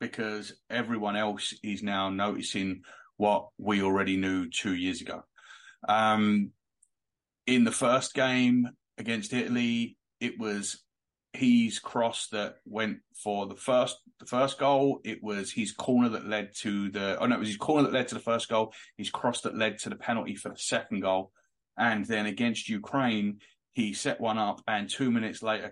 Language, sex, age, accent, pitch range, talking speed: English, male, 30-49, British, 100-120 Hz, 175 wpm